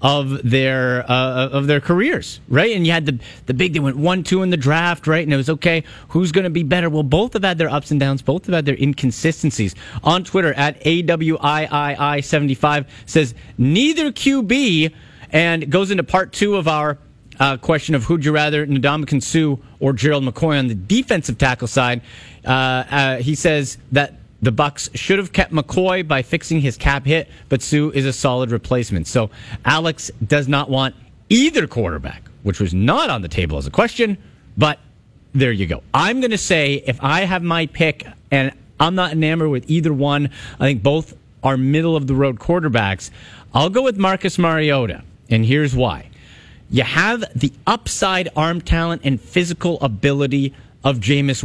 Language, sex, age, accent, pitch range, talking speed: English, male, 40-59, American, 130-165 Hz, 180 wpm